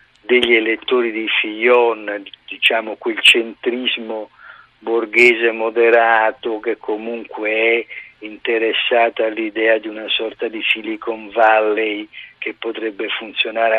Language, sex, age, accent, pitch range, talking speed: Italian, male, 50-69, native, 110-140 Hz, 100 wpm